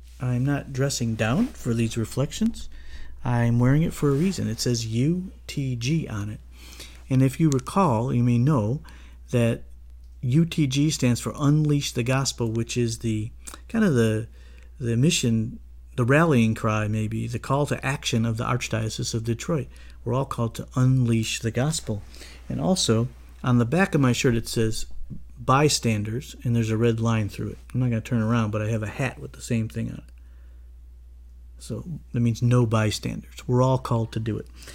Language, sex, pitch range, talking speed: English, male, 105-130 Hz, 185 wpm